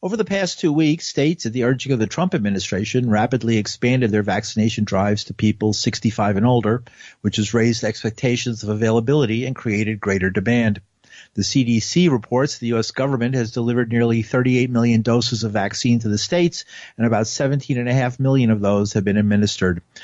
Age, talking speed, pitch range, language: 50-69, 175 wpm, 105-130 Hz, English